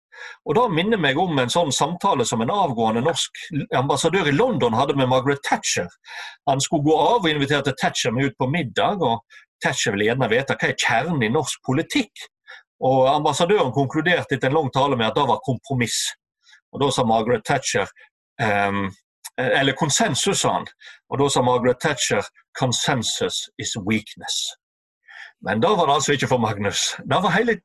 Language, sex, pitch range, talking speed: English, male, 130-175 Hz, 170 wpm